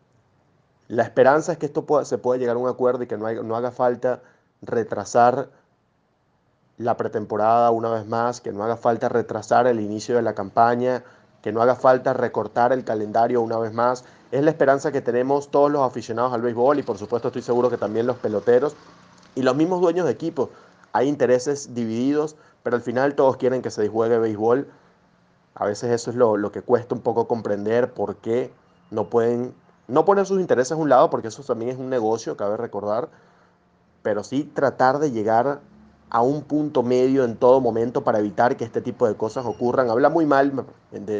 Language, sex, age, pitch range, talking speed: Spanish, male, 30-49, 115-135 Hz, 195 wpm